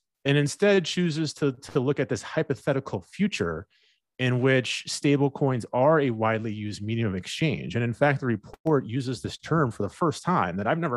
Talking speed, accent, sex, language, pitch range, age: 195 wpm, American, male, English, 100-140 Hz, 30-49